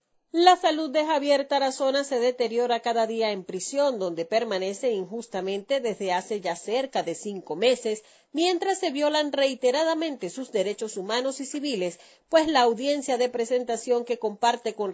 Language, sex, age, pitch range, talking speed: Spanish, female, 40-59, 200-280 Hz, 155 wpm